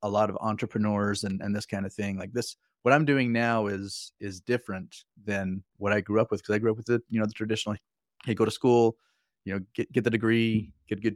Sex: male